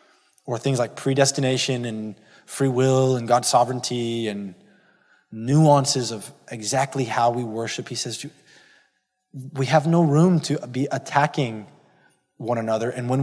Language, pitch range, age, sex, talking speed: English, 120-155 Hz, 20-39, male, 135 wpm